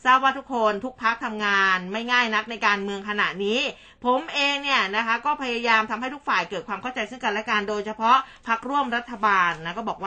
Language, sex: Thai, female